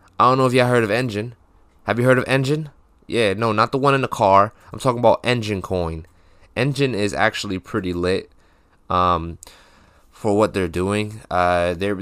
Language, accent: English, American